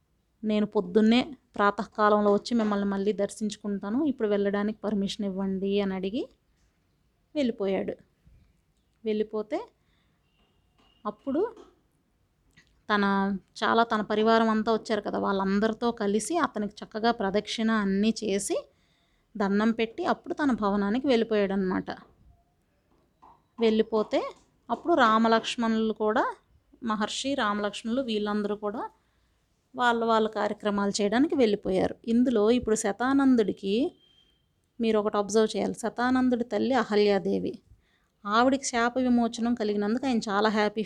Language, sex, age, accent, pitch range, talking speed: Telugu, female, 30-49, native, 210-250 Hz, 95 wpm